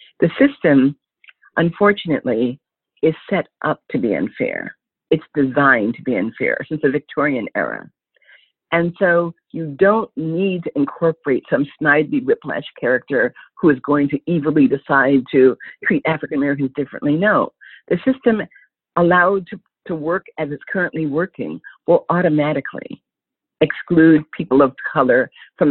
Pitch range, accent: 145-190 Hz, American